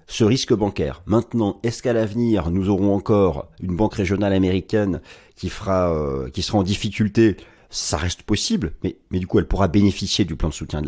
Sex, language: male, French